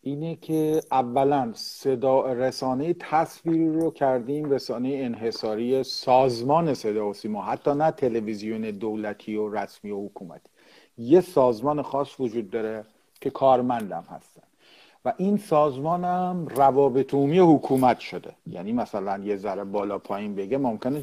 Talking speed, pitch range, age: 125 wpm, 120-155 Hz, 50-69